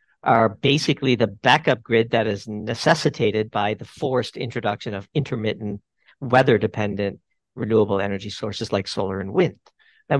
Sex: male